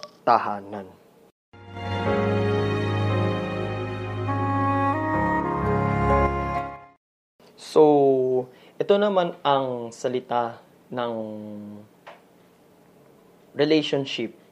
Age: 20-39